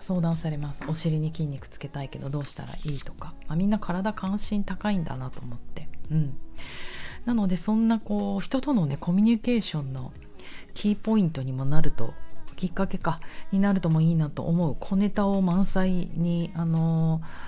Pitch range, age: 145-200 Hz, 40-59